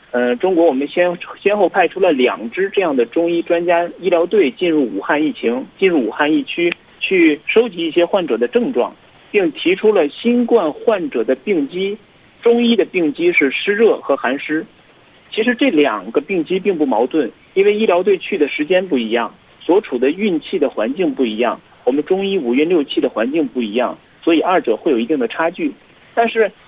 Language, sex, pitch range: Korean, male, 155-245 Hz